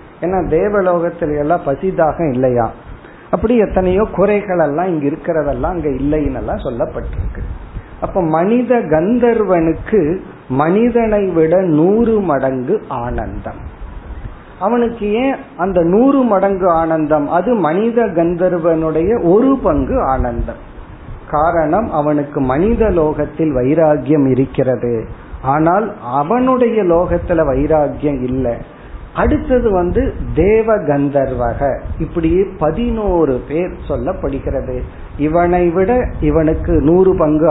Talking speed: 95 wpm